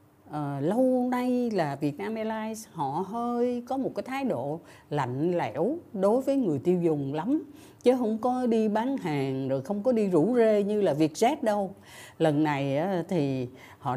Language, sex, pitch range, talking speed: Vietnamese, female, 150-245 Hz, 175 wpm